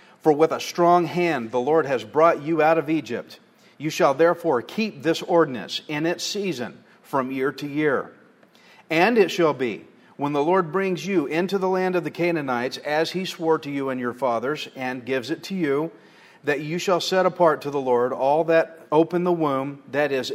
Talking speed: 205 wpm